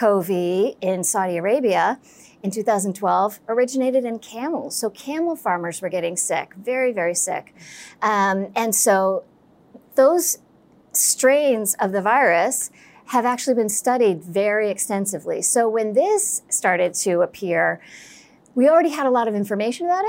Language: English